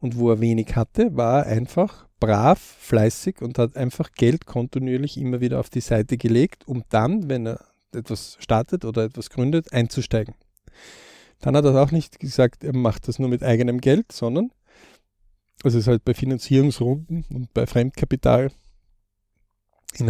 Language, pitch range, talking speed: German, 115-135 Hz, 165 wpm